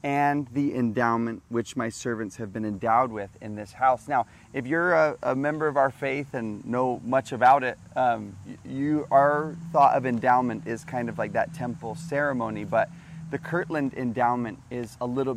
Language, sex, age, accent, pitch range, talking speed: English, male, 30-49, American, 120-140 Hz, 180 wpm